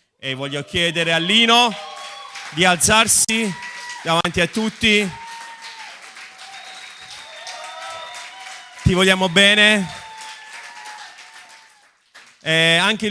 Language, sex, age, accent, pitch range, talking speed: Italian, male, 30-49, native, 145-180 Hz, 65 wpm